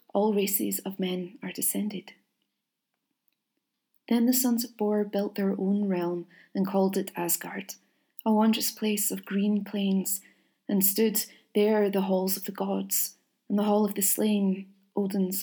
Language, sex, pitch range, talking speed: English, female, 185-220 Hz, 155 wpm